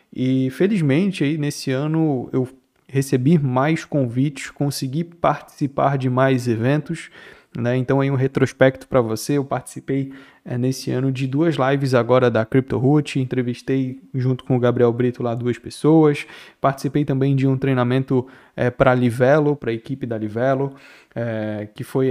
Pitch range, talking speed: 125-145 Hz, 160 wpm